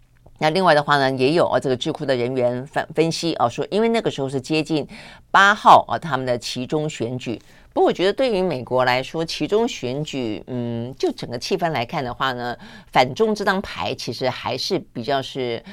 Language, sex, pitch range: Chinese, female, 125-160 Hz